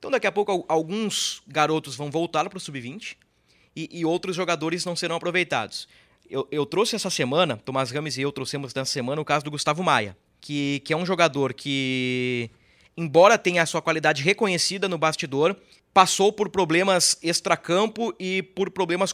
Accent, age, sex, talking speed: Brazilian, 20-39, male, 175 wpm